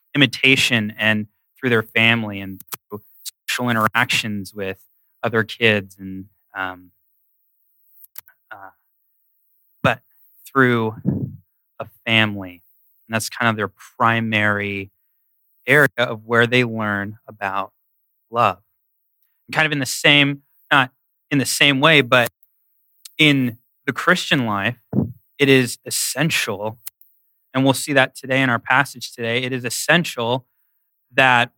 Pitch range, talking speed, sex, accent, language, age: 105-125 Hz, 120 wpm, male, American, English, 20-39